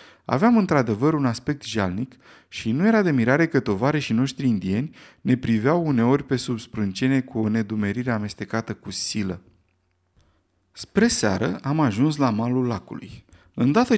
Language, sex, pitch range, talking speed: Romanian, male, 110-155 Hz, 140 wpm